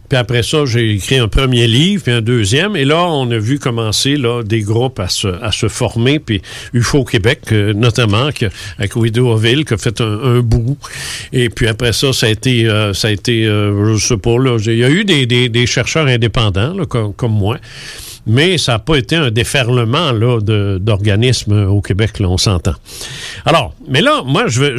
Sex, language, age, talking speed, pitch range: male, French, 50-69, 220 wpm, 115-150 Hz